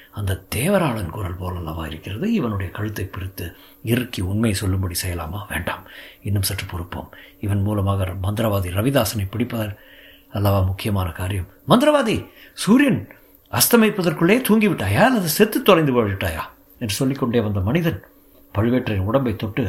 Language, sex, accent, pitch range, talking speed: Tamil, male, native, 100-140 Hz, 120 wpm